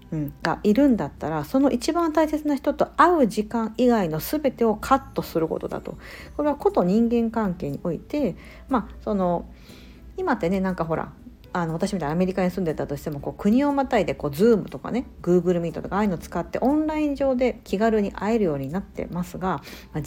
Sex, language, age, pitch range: female, Japanese, 50-69, 165-250 Hz